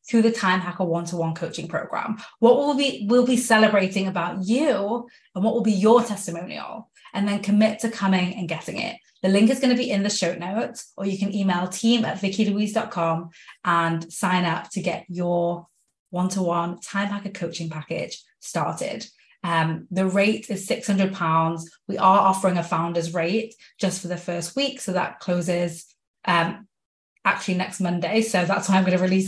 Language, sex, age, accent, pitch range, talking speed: English, female, 20-39, British, 175-215 Hz, 180 wpm